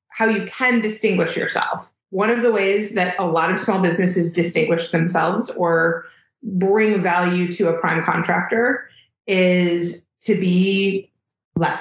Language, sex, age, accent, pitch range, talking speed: English, female, 30-49, American, 170-205 Hz, 140 wpm